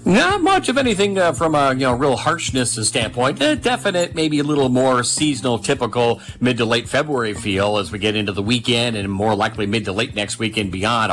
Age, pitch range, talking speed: 50-69, 105-130 Hz, 215 wpm